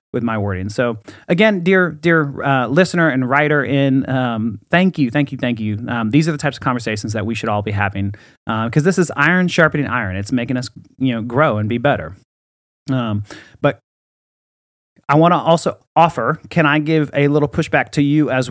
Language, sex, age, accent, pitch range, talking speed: English, male, 30-49, American, 110-150 Hz, 210 wpm